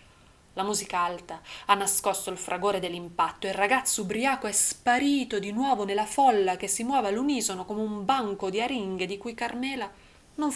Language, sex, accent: Italian, female, native